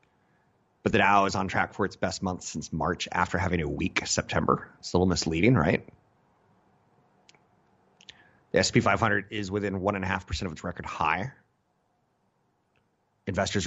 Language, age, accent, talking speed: English, 30-49, American, 145 wpm